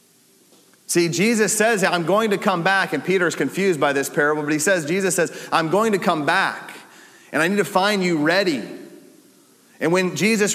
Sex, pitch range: male, 145-195 Hz